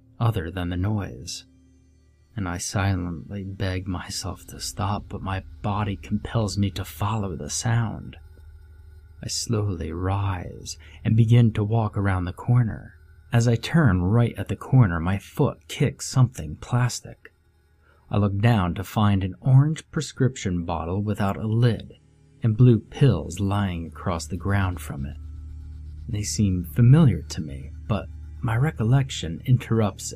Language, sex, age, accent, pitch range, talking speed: English, male, 30-49, American, 85-115 Hz, 145 wpm